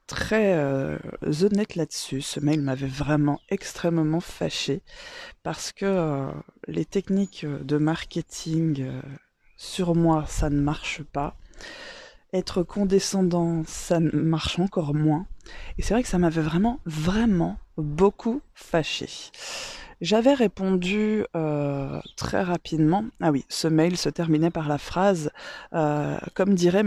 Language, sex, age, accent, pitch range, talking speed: French, female, 20-39, French, 150-190 Hz, 125 wpm